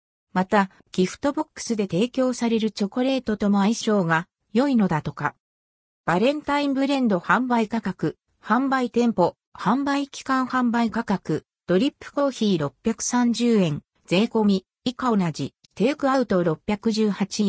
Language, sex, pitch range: Japanese, female, 180-260 Hz